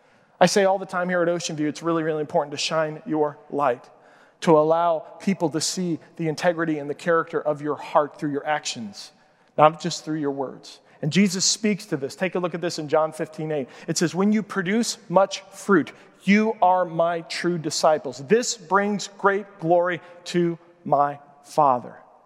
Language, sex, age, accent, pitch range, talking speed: English, male, 40-59, American, 160-215 Hz, 190 wpm